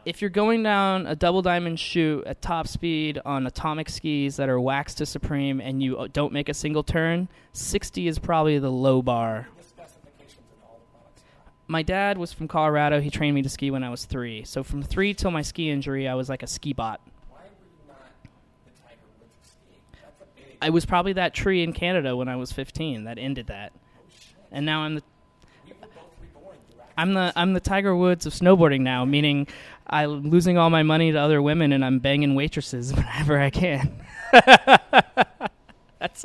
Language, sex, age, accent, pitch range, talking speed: English, male, 20-39, American, 130-170 Hz, 170 wpm